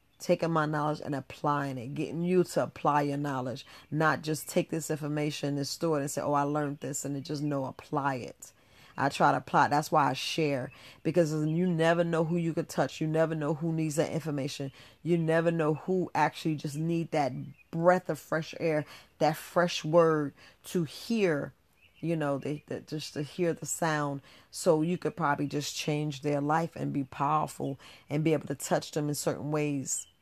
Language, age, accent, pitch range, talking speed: English, 40-59, American, 145-170 Hz, 195 wpm